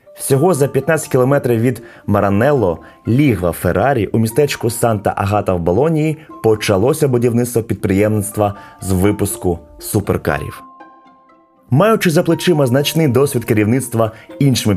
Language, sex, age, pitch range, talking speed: Ukrainian, male, 20-39, 100-140 Hz, 105 wpm